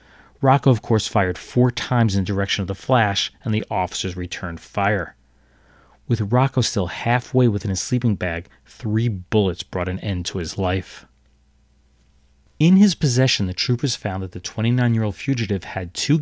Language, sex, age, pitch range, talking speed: English, male, 40-59, 90-120 Hz, 165 wpm